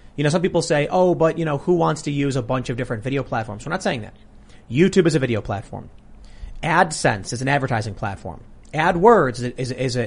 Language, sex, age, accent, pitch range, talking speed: English, male, 30-49, American, 120-160 Hz, 225 wpm